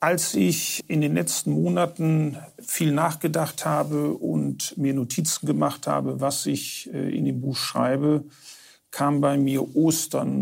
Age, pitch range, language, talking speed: 50-69, 125-150 Hz, German, 140 wpm